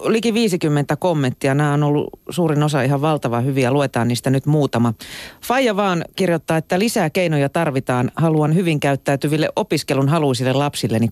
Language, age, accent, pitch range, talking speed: Finnish, 40-59, native, 125-160 Hz, 150 wpm